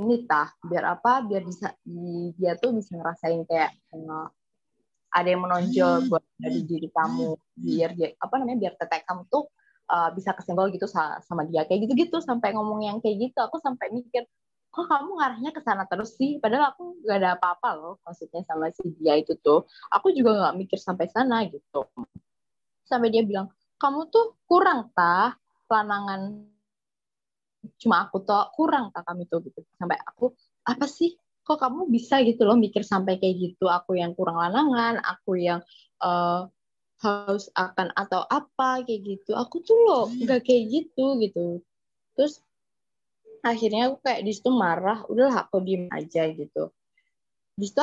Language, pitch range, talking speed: Indonesian, 180-260 Hz, 160 wpm